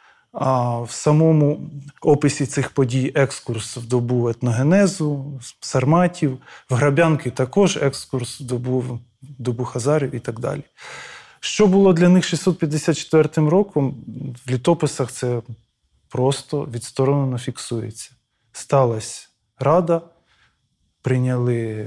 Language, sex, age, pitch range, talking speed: Ukrainian, male, 20-39, 125-150 Hz, 105 wpm